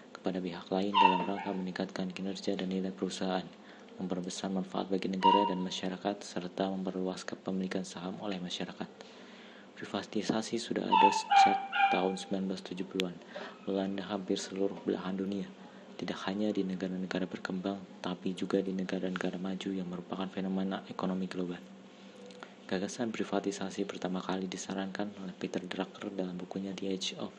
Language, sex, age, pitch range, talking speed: Indonesian, male, 20-39, 95-100 Hz, 135 wpm